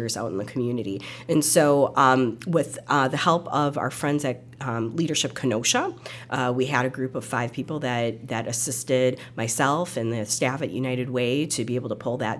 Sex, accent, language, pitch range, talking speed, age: female, American, English, 120-145 Hz, 205 wpm, 40-59